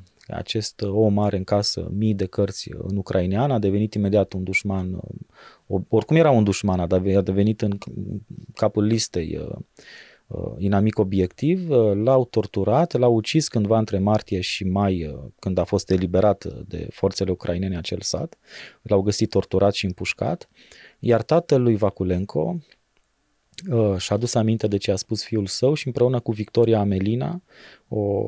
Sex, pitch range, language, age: male, 100-120 Hz, Romanian, 30-49